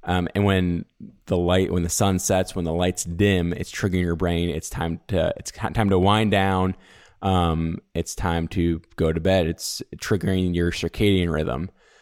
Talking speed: 185 wpm